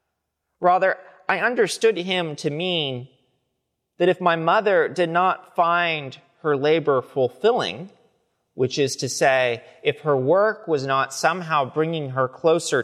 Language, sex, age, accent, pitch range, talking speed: English, male, 30-49, American, 125-170 Hz, 135 wpm